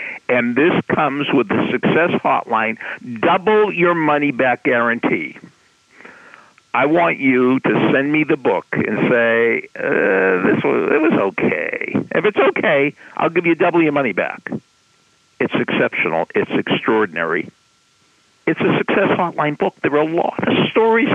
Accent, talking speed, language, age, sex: American, 150 wpm, English, 60-79, male